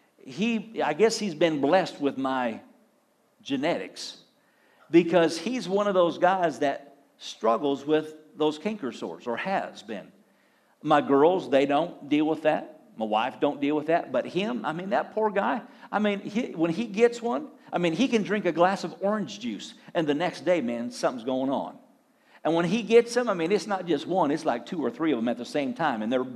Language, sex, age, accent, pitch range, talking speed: English, male, 50-69, American, 155-225 Hz, 210 wpm